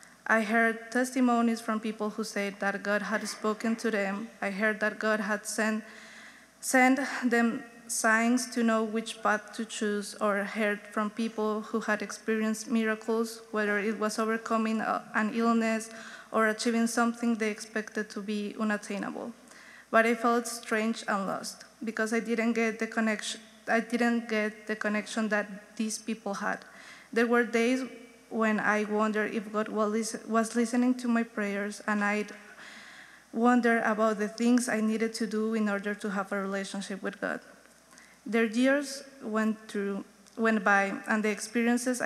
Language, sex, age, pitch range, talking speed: English, female, 20-39, 210-235 Hz, 160 wpm